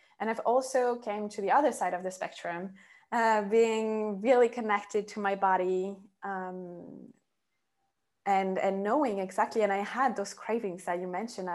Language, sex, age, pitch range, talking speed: English, female, 20-39, 190-240 Hz, 160 wpm